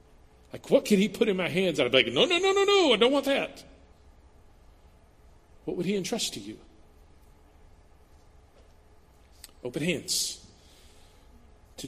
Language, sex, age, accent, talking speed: English, male, 40-59, American, 145 wpm